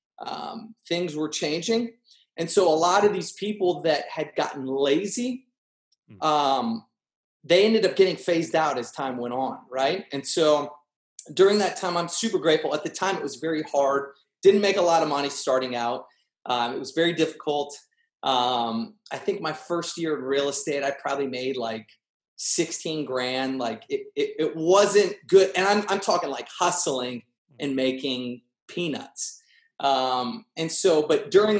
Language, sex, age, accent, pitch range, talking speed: English, male, 30-49, American, 135-200 Hz, 170 wpm